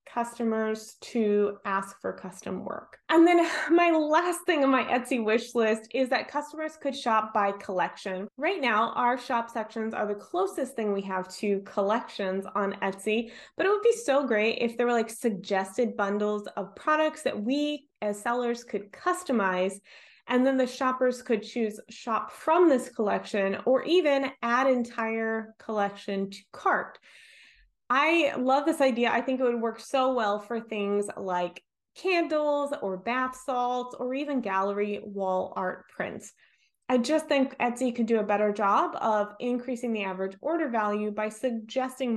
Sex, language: female, English